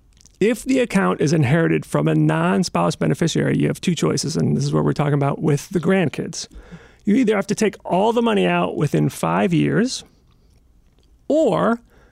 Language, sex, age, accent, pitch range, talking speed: English, male, 40-59, American, 145-195 Hz, 180 wpm